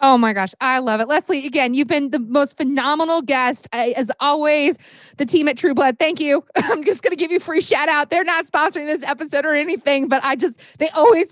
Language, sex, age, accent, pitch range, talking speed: English, female, 20-39, American, 265-350 Hz, 240 wpm